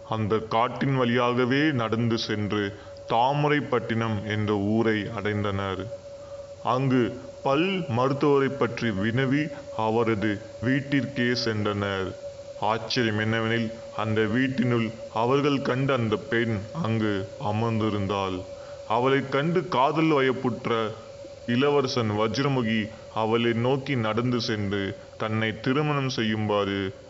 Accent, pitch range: native, 105-130 Hz